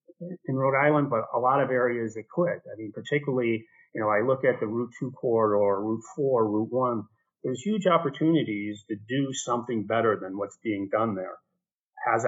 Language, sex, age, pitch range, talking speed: English, male, 40-59, 110-135 Hz, 190 wpm